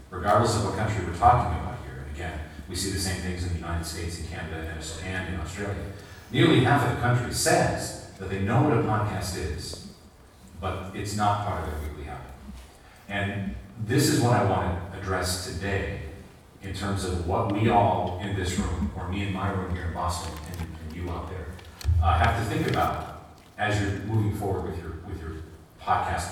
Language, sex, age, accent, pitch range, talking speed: French, male, 40-59, American, 85-105 Hz, 210 wpm